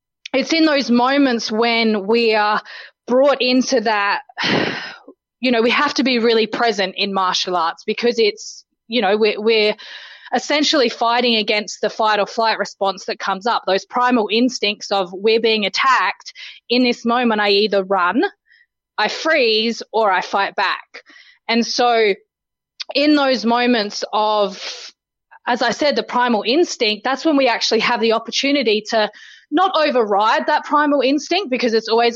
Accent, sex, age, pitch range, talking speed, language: Australian, female, 20-39, 205-260 Hz, 160 wpm, English